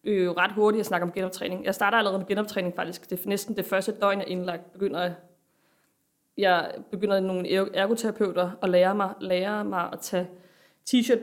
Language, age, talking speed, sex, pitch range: Danish, 20-39, 190 wpm, female, 190-240 Hz